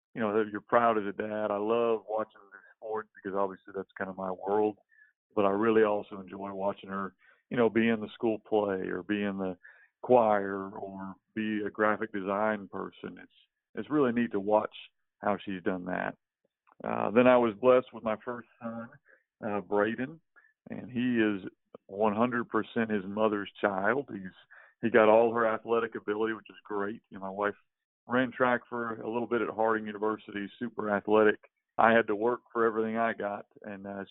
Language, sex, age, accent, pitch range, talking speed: English, male, 50-69, American, 100-115 Hz, 190 wpm